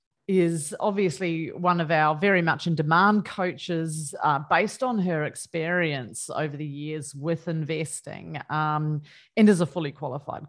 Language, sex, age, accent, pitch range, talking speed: English, female, 30-49, Australian, 150-185 Hz, 145 wpm